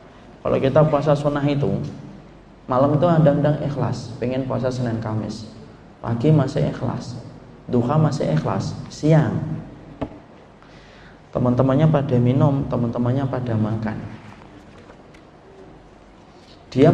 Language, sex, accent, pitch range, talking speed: Indonesian, male, native, 115-155 Hz, 90 wpm